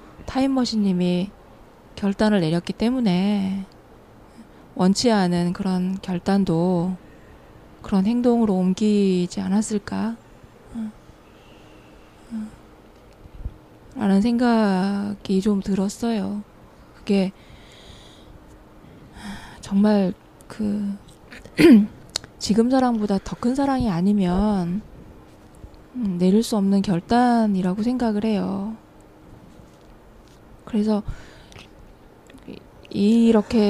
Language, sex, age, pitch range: Korean, female, 20-39, 195-225 Hz